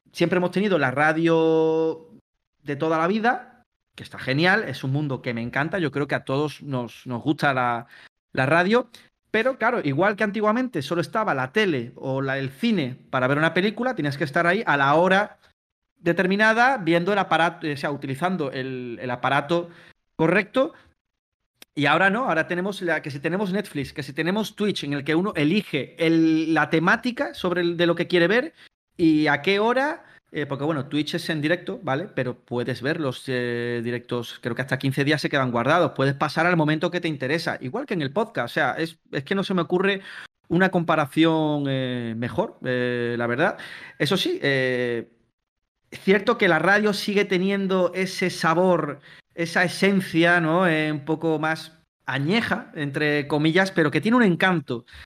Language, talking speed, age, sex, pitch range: Spanish, 185 wpm, 30-49, male, 140-185 Hz